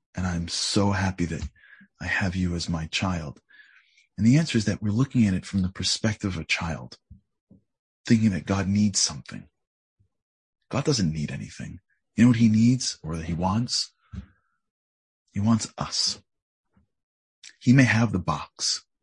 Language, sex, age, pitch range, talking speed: English, male, 30-49, 85-110 Hz, 165 wpm